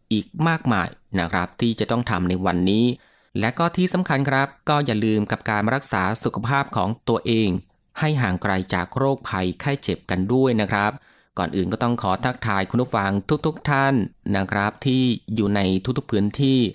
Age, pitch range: 20-39, 95-125 Hz